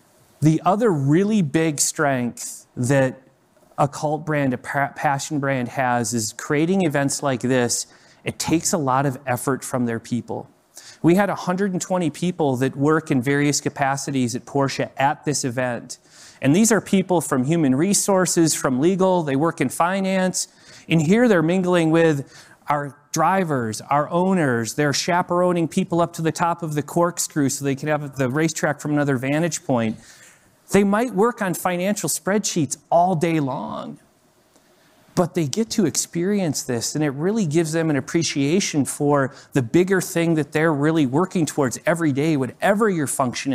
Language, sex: English, male